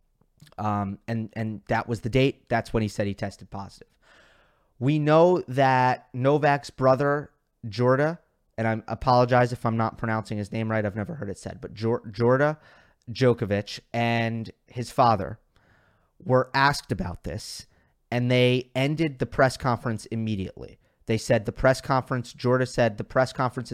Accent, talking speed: American, 155 wpm